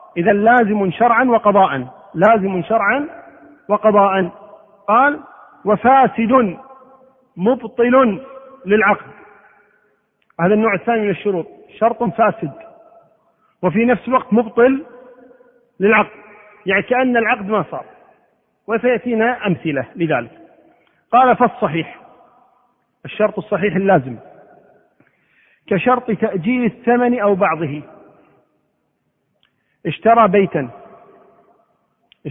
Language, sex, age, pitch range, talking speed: Arabic, male, 40-59, 190-240 Hz, 80 wpm